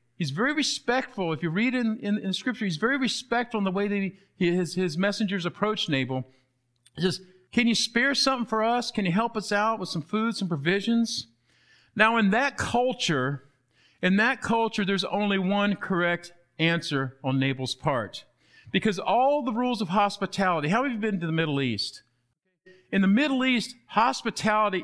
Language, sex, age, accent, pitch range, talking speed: English, male, 50-69, American, 160-225 Hz, 180 wpm